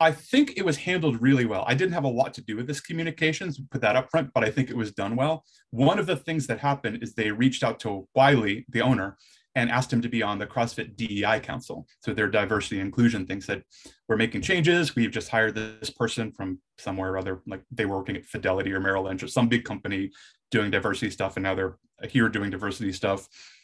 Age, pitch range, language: 30-49, 105-135 Hz, English